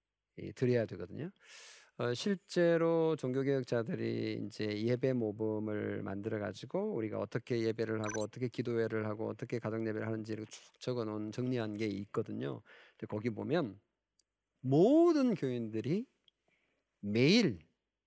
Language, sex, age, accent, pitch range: Korean, male, 40-59, native, 110-160 Hz